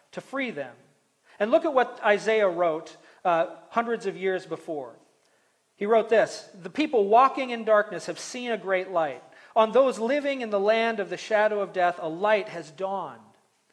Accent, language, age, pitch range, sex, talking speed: American, English, 40-59, 180-225 Hz, male, 185 wpm